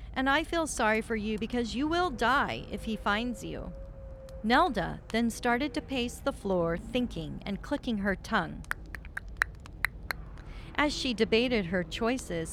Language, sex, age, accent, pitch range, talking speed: English, female, 40-59, American, 210-290 Hz, 150 wpm